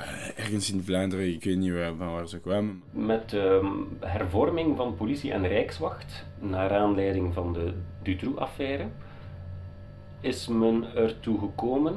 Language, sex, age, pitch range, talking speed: Dutch, male, 40-59, 90-110 Hz, 130 wpm